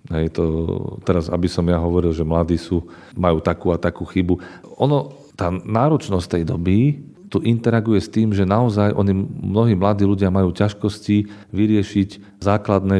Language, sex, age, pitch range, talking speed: Slovak, male, 40-59, 85-95 Hz, 155 wpm